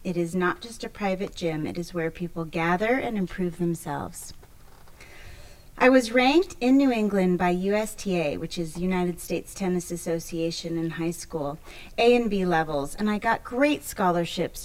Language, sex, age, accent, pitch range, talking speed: English, female, 30-49, American, 170-230 Hz, 170 wpm